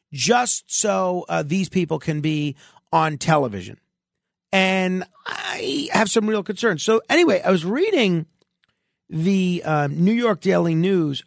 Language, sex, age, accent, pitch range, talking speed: English, male, 40-59, American, 150-205 Hz, 140 wpm